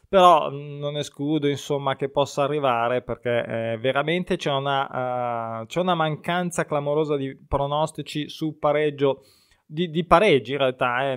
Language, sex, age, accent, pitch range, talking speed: Italian, male, 20-39, native, 135-165 Hz, 145 wpm